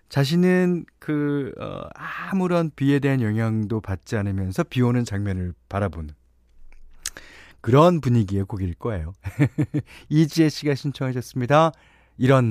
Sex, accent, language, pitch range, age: male, native, Korean, 100-145 Hz, 40-59